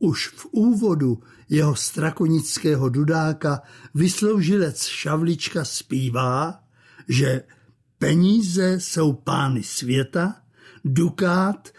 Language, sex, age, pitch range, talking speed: Czech, male, 60-79, 130-180 Hz, 75 wpm